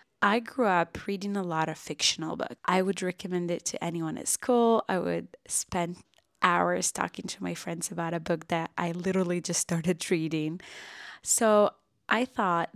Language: Arabic